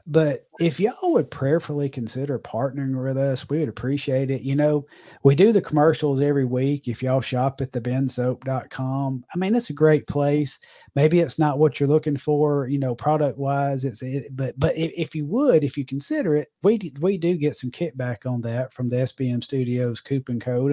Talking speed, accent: 195 wpm, American